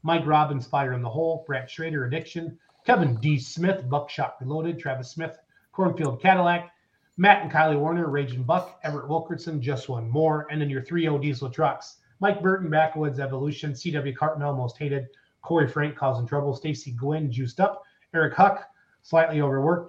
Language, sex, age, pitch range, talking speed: English, male, 30-49, 130-170 Hz, 165 wpm